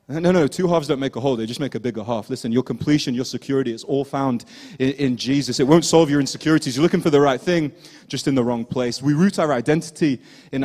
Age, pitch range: 30-49, 130-180 Hz